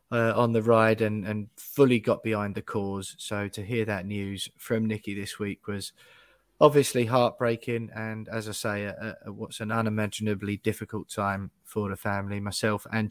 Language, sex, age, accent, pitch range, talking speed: English, male, 20-39, British, 95-110 Hz, 170 wpm